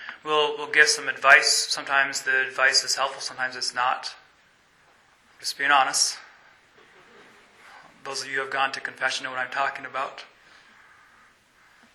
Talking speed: 145 wpm